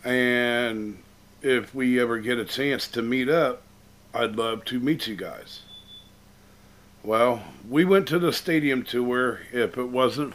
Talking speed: 150 wpm